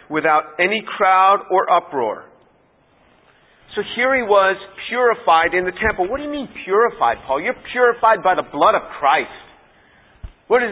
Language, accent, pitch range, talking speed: English, American, 175-230 Hz, 155 wpm